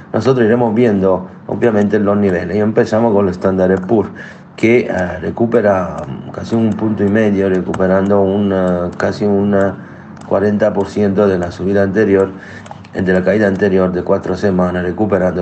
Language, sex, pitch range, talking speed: Spanish, male, 90-105 Hz, 145 wpm